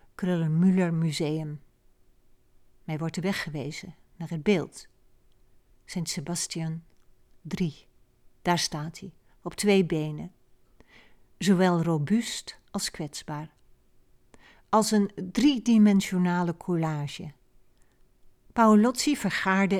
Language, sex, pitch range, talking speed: Dutch, female, 160-200 Hz, 80 wpm